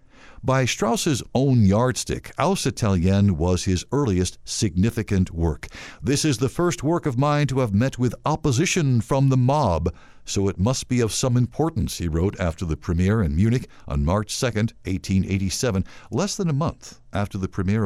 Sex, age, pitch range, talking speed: male, 60-79, 95-135 Hz, 170 wpm